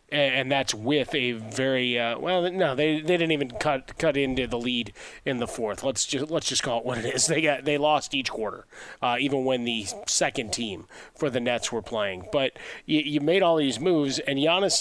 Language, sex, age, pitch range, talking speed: English, male, 30-49, 130-155 Hz, 225 wpm